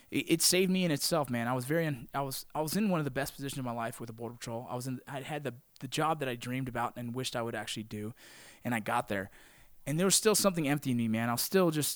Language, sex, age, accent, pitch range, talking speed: English, male, 20-39, American, 115-140 Hz, 310 wpm